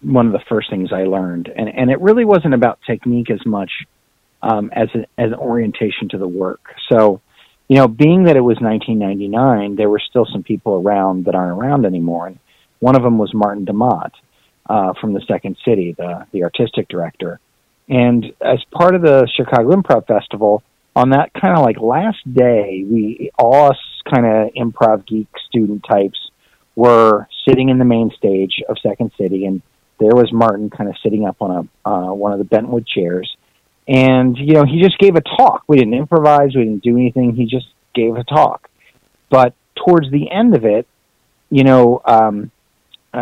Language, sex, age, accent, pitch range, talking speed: English, male, 40-59, American, 105-130 Hz, 185 wpm